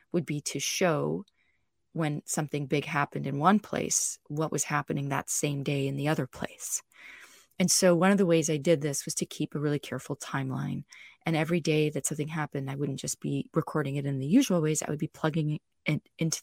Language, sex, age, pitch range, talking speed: English, female, 30-49, 145-180 Hz, 215 wpm